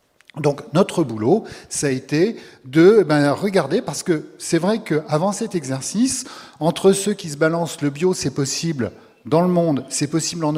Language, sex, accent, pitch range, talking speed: French, male, French, 125-175 Hz, 170 wpm